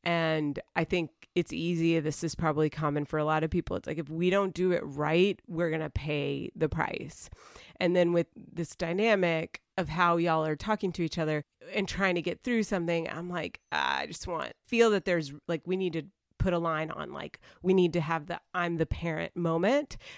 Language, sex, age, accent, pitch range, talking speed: English, female, 30-49, American, 155-180 Hz, 220 wpm